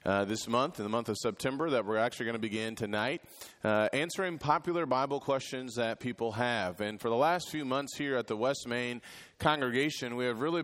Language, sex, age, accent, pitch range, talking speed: English, male, 30-49, American, 110-130 Hz, 215 wpm